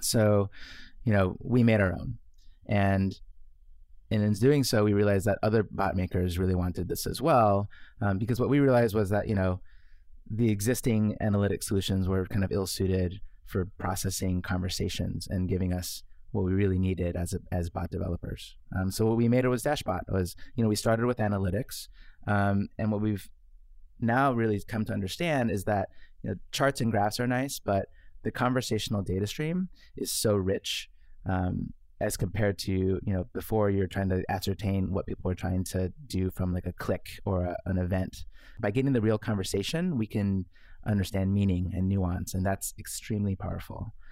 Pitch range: 95-110 Hz